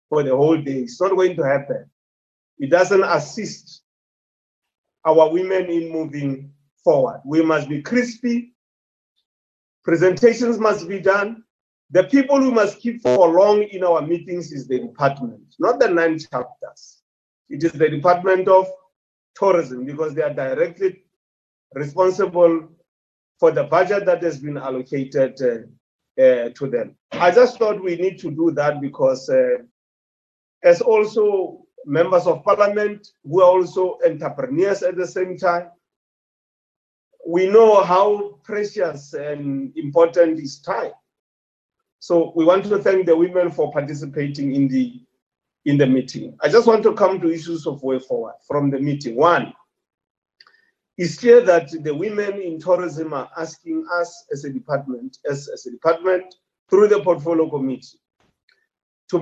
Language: English